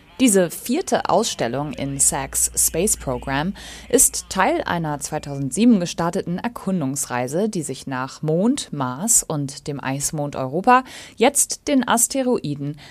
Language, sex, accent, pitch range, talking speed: German, female, German, 145-215 Hz, 115 wpm